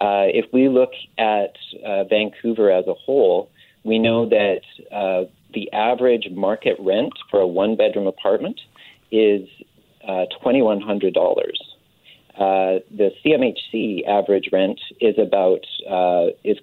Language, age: English, 40-59